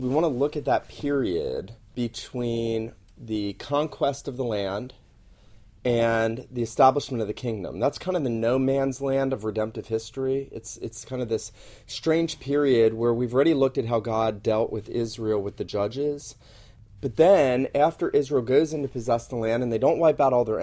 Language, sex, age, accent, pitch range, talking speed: English, male, 30-49, American, 110-135 Hz, 190 wpm